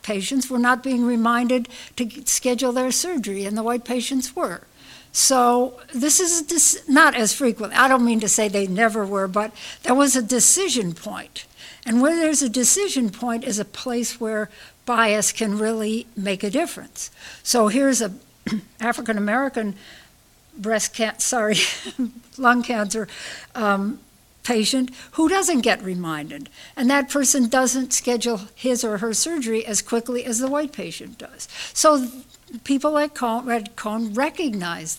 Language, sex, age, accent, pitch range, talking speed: English, female, 60-79, American, 215-255 Hz, 150 wpm